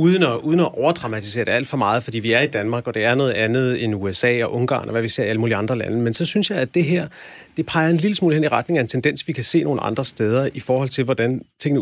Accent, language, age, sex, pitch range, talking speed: native, Danish, 40-59, male, 120-160 Hz, 310 wpm